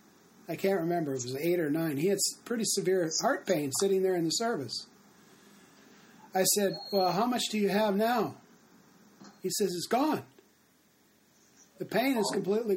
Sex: male